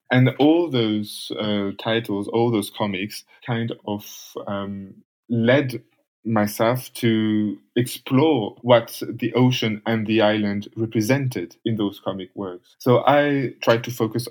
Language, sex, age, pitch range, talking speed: English, male, 20-39, 105-120 Hz, 130 wpm